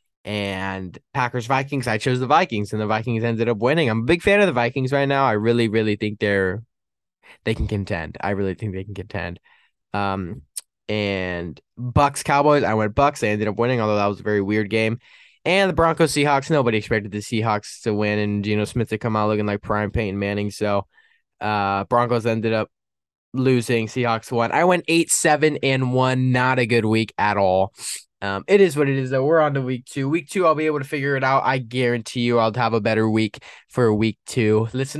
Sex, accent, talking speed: male, American, 220 wpm